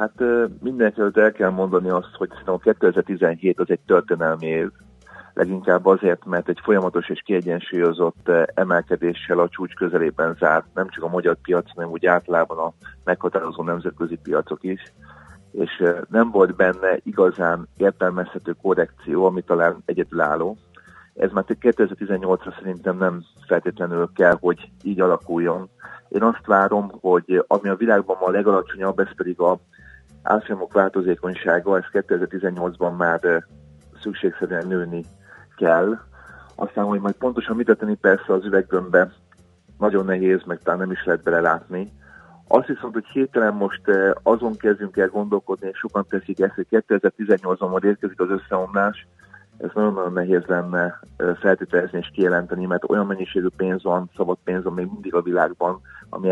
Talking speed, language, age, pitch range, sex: 145 wpm, Hungarian, 40-59, 85-100 Hz, male